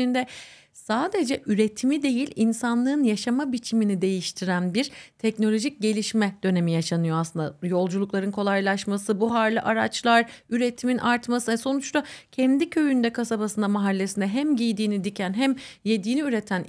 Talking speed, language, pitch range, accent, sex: 110 wpm, Turkish, 200-265 Hz, native, female